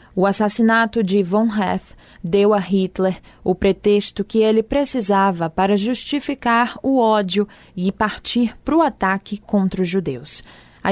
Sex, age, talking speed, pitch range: female, 20-39, 145 wpm, 185-220 Hz